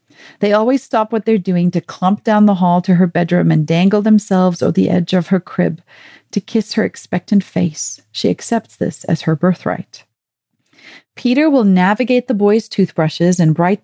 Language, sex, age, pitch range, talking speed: English, female, 40-59, 175-235 Hz, 180 wpm